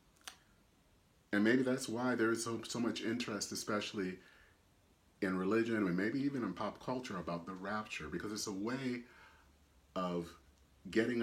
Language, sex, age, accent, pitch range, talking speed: English, male, 40-59, American, 85-125 Hz, 150 wpm